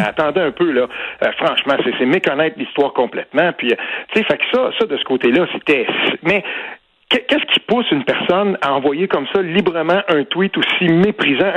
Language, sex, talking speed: French, male, 180 wpm